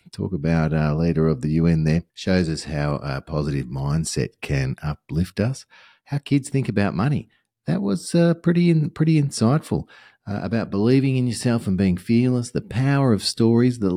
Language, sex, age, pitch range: English, male, 40-59, 75-105 Hz